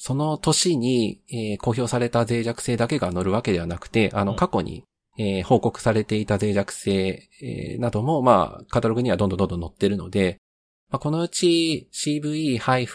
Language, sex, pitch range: Japanese, male, 95-120 Hz